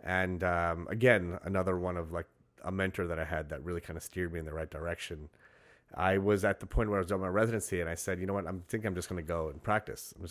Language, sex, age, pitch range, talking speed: English, male, 30-49, 85-115 Hz, 290 wpm